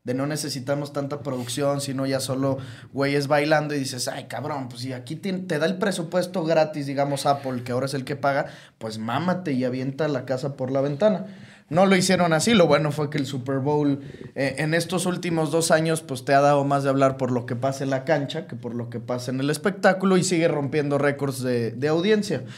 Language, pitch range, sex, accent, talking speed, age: English, 135-165 Hz, male, Mexican, 225 wpm, 20-39